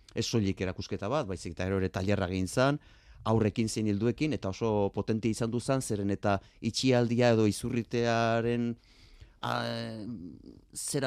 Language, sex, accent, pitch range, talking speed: Spanish, male, Spanish, 95-125 Hz, 130 wpm